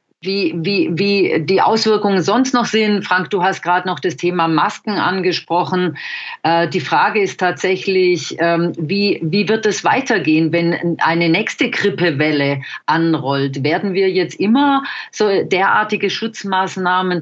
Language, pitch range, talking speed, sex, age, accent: English, 165-190 Hz, 130 wpm, female, 40-59, German